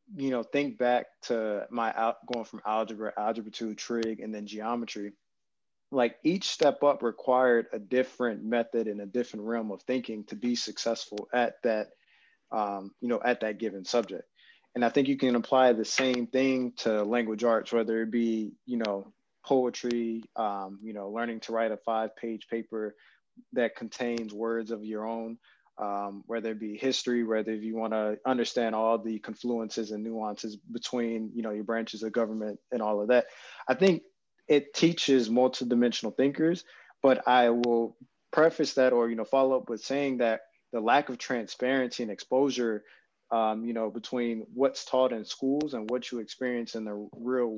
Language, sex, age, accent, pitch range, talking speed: English, male, 20-39, American, 110-125 Hz, 180 wpm